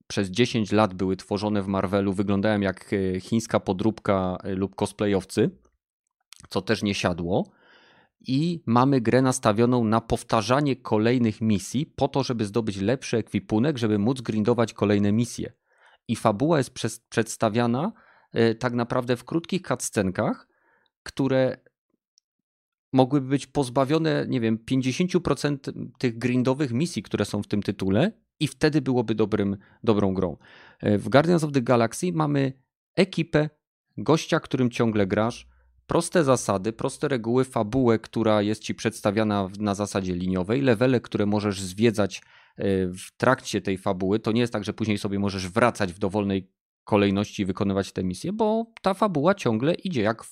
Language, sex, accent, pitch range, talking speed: Polish, male, native, 105-135 Hz, 145 wpm